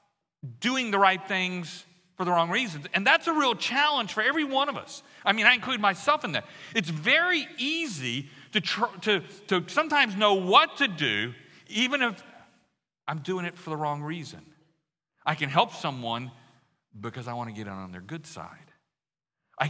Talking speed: 185 wpm